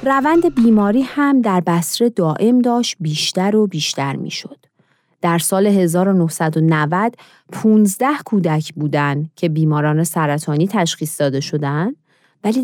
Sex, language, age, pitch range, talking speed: female, Persian, 40-59, 160-235 Hz, 120 wpm